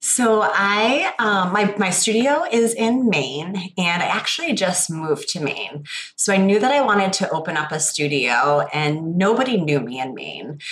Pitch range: 150-195 Hz